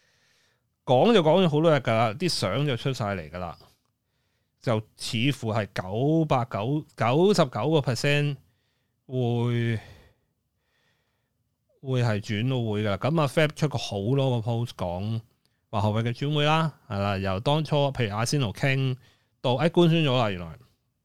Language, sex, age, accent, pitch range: Chinese, male, 30-49, native, 105-135 Hz